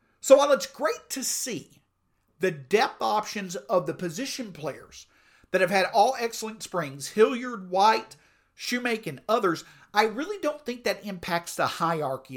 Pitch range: 160-225 Hz